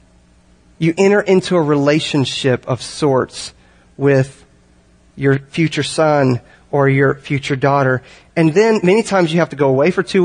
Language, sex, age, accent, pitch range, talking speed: English, male, 40-59, American, 140-225 Hz, 150 wpm